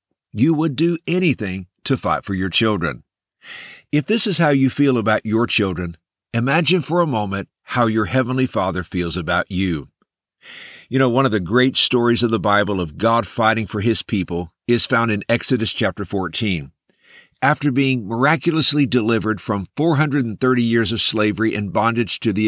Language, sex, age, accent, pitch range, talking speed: English, male, 50-69, American, 105-140 Hz, 170 wpm